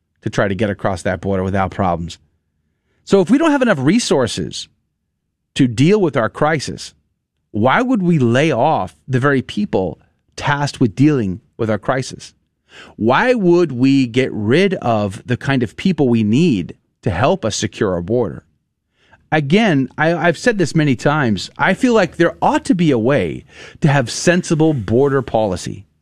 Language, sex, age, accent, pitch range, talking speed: English, male, 30-49, American, 105-170 Hz, 170 wpm